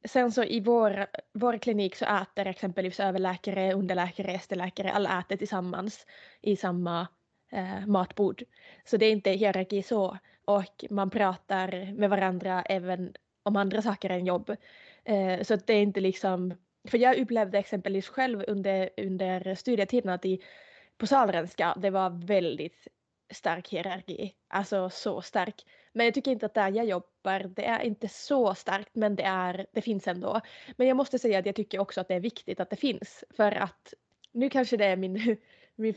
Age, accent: 20-39, Norwegian